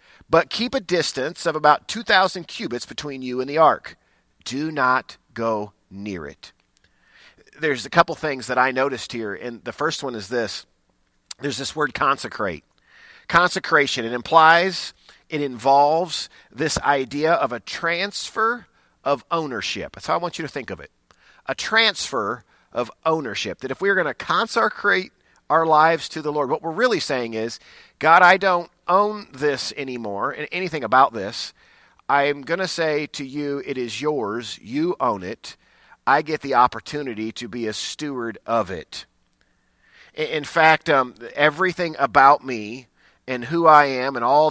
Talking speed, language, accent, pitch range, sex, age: 160 wpm, English, American, 125-165 Hz, male, 40-59